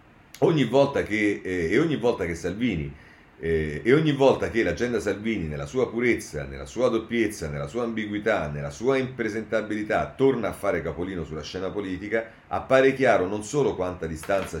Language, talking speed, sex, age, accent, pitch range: Italian, 125 wpm, male, 40-59, native, 80-110 Hz